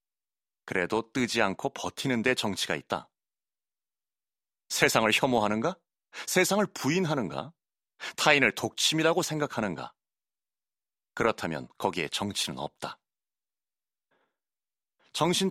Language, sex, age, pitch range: Korean, male, 30-49, 105-155 Hz